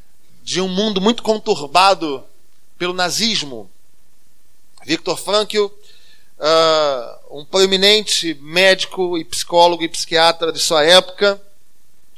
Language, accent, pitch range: Portuguese, Brazilian, 165-210 Hz